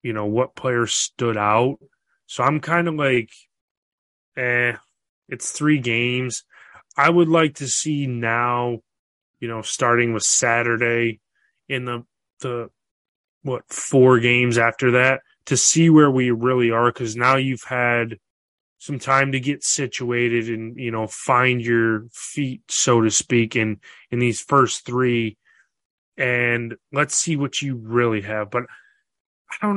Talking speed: 145 wpm